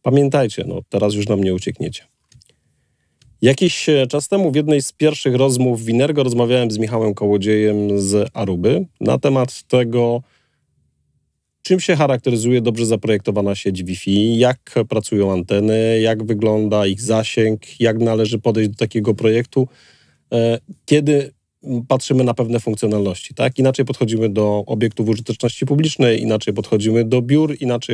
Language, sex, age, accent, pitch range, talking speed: Polish, male, 40-59, native, 105-125 Hz, 135 wpm